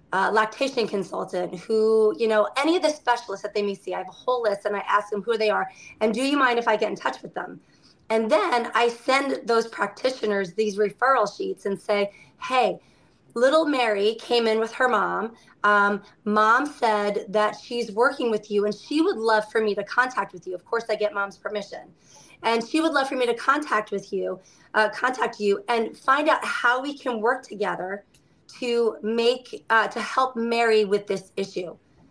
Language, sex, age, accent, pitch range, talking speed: English, female, 30-49, American, 205-245 Hz, 205 wpm